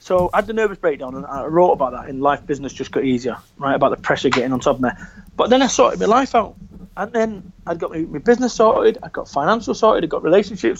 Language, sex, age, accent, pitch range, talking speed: English, male, 30-49, British, 140-225 Hz, 270 wpm